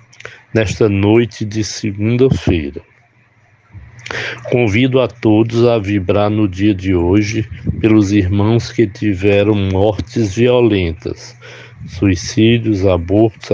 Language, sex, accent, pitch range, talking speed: Portuguese, male, Brazilian, 100-115 Hz, 95 wpm